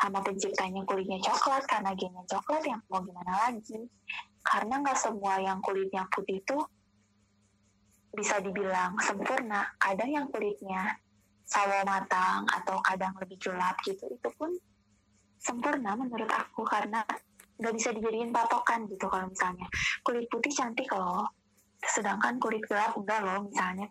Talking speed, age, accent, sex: 135 wpm, 20-39, native, female